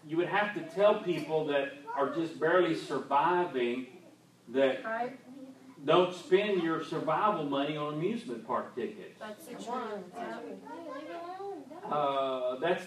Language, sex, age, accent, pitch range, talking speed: English, male, 40-59, American, 140-200 Hz, 105 wpm